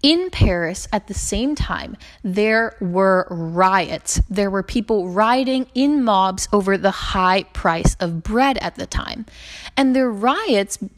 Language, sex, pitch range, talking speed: English, female, 185-255 Hz, 150 wpm